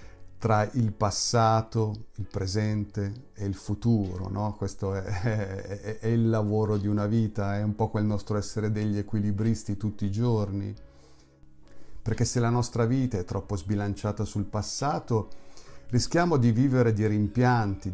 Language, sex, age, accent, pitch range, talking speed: Italian, male, 50-69, native, 100-120 Hz, 145 wpm